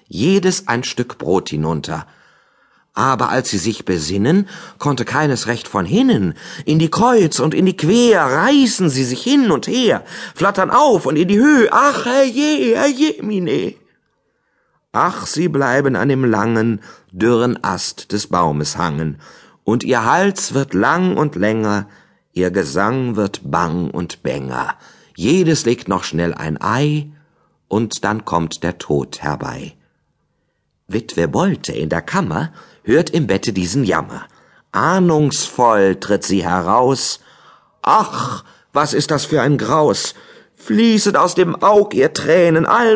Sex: male